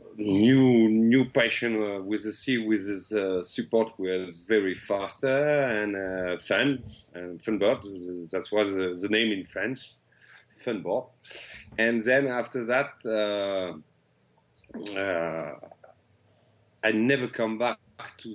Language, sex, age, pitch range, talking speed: English, male, 40-59, 95-110 Hz, 135 wpm